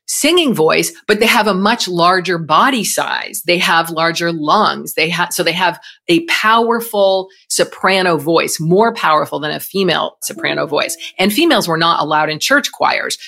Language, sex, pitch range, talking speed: English, female, 160-205 Hz, 165 wpm